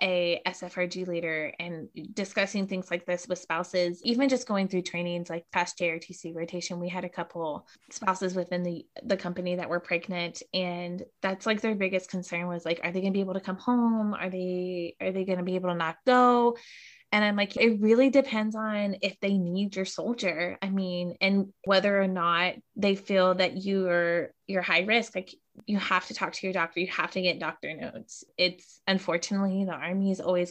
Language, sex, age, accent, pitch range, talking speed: English, female, 20-39, American, 180-210 Hz, 205 wpm